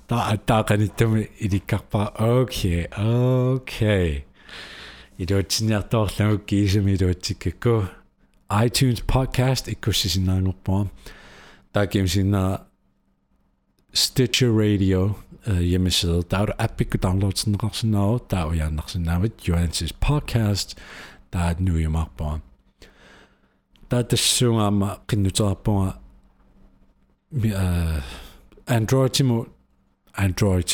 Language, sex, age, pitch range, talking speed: Finnish, male, 50-69, 85-110 Hz, 35 wpm